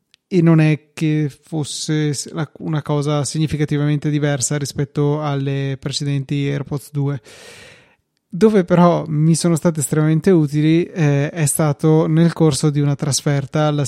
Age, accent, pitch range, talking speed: 20-39, native, 145-165 Hz, 130 wpm